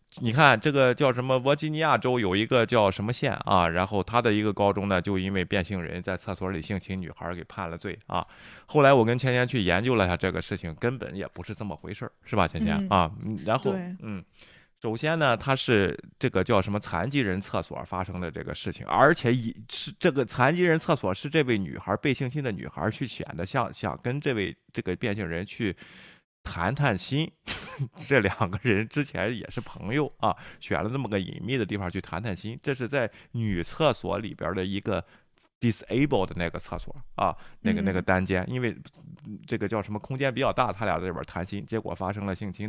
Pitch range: 95-130 Hz